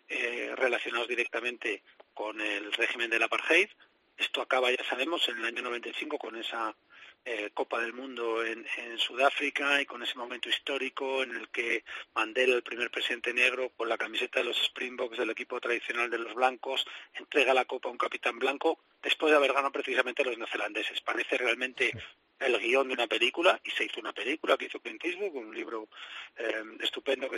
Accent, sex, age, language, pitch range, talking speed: Spanish, male, 40-59, Spanish, 125-175 Hz, 190 wpm